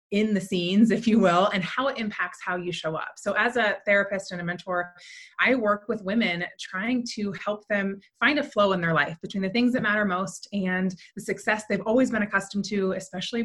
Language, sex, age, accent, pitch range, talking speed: English, female, 20-39, American, 190-235 Hz, 225 wpm